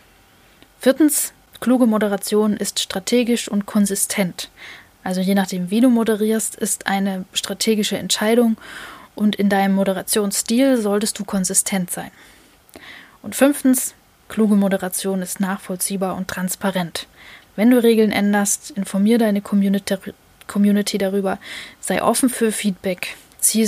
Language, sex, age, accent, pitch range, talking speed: German, female, 10-29, German, 195-230 Hz, 115 wpm